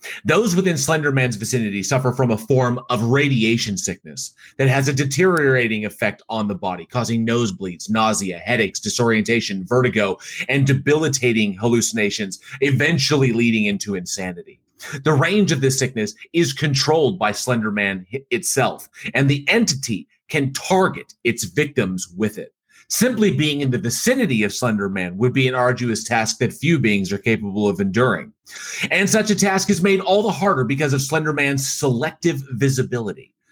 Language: English